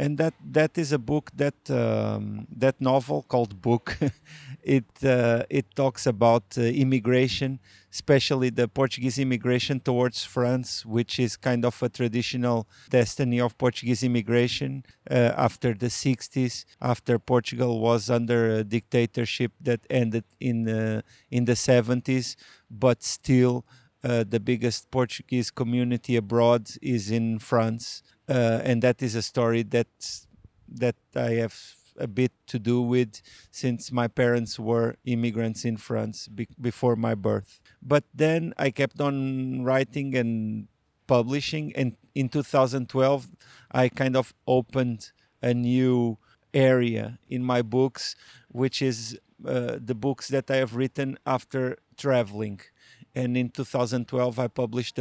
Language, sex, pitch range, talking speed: Romanian, male, 115-130 Hz, 135 wpm